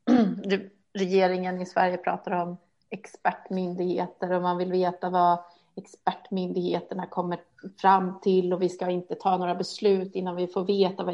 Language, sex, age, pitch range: Swedish, female, 30-49, 180-215 Hz